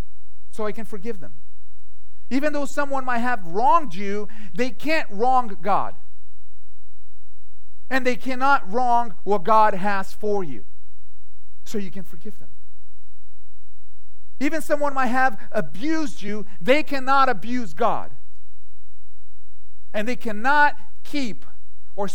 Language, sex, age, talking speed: English, male, 40-59, 120 wpm